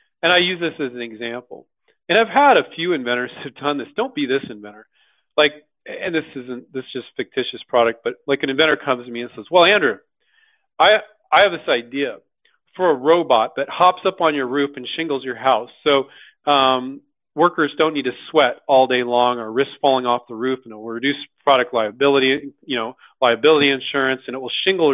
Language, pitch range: English, 130-175 Hz